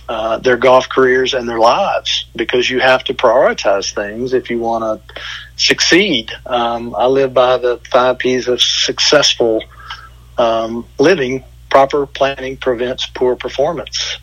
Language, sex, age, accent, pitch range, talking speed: English, male, 50-69, American, 120-135 Hz, 145 wpm